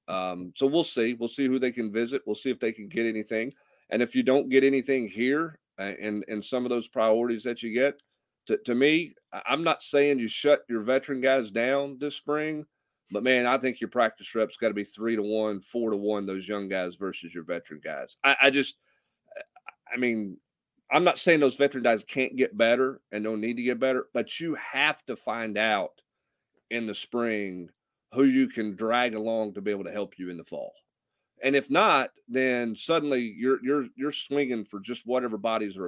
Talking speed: 215 wpm